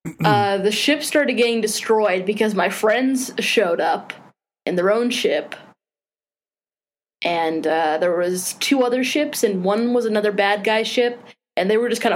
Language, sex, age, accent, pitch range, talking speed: English, female, 20-39, American, 205-275 Hz, 170 wpm